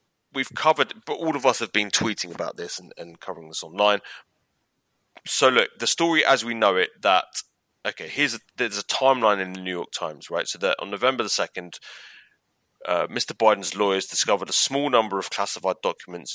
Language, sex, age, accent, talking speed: English, male, 30-49, British, 195 wpm